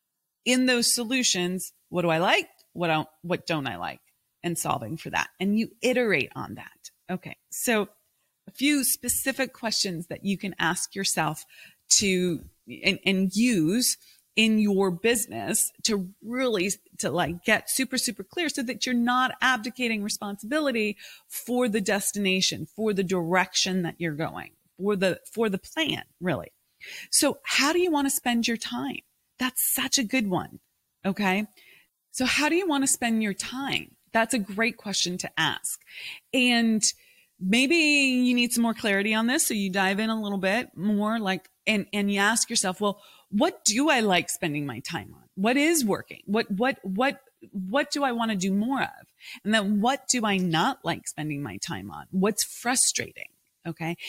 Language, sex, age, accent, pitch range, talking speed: English, female, 30-49, American, 185-250 Hz, 175 wpm